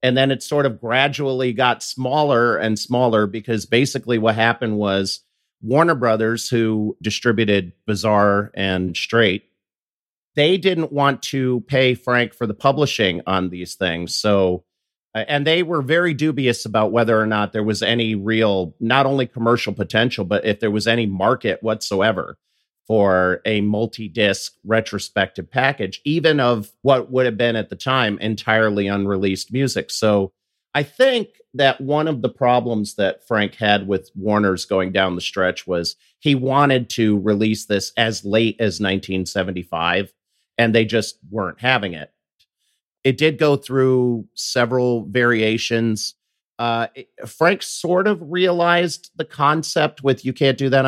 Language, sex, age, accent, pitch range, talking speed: English, male, 40-59, American, 105-135 Hz, 150 wpm